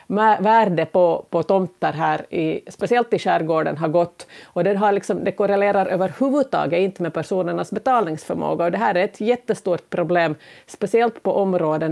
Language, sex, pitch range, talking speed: Swedish, female, 165-200 Hz, 160 wpm